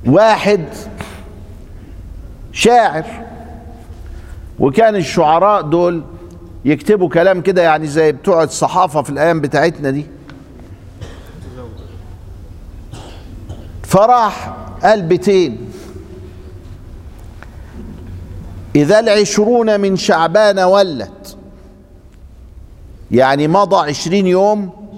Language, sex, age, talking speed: Arabic, male, 50-69, 65 wpm